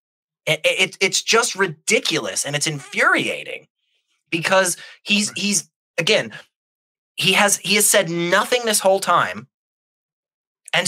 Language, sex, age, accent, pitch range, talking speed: English, male, 20-39, American, 145-205 Hz, 120 wpm